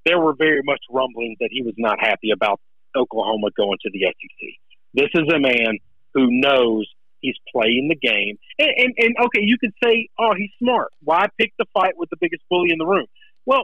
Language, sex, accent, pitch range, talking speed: English, male, American, 185-270 Hz, 210 wpm